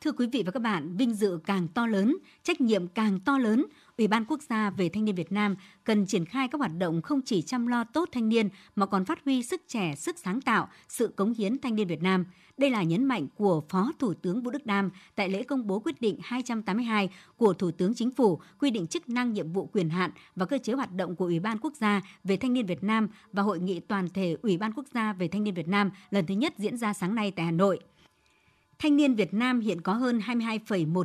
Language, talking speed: Vietnamese, 255 wpm